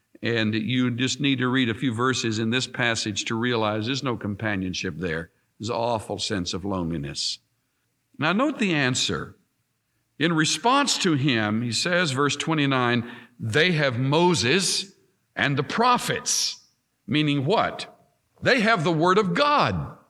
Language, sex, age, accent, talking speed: English, male, 60-79, American, 150 wpm